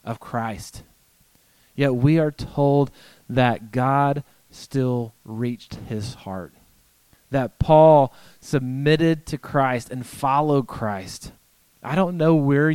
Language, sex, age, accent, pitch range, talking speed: English, male, 30-49, American, 115-155 Hz, 115 wpm